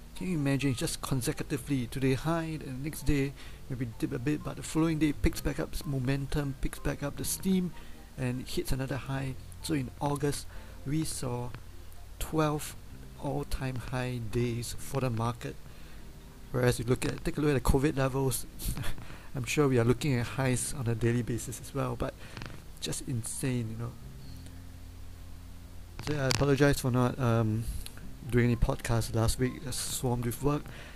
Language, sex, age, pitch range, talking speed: English, male, 50-69, 110-140 Hz, 175 wpm